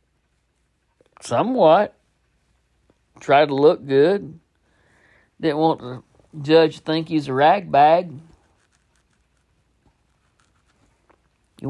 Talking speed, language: 80 wpm, English